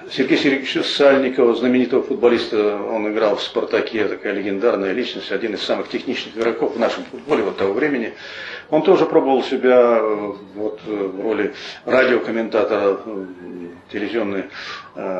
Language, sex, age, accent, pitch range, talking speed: Russian, male, 40-59, native, 110-140 Hz, 125 wpm